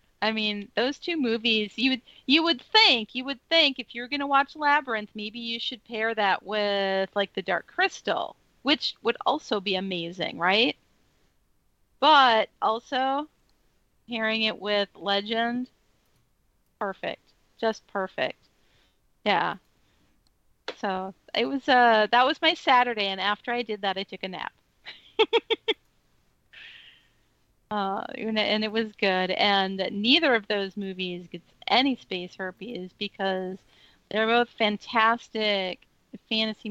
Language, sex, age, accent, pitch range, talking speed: English, female, 40-59, American, 195-240 Hz, 130 wpm